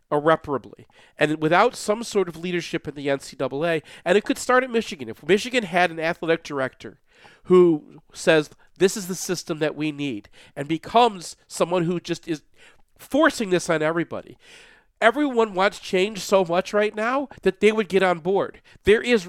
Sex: male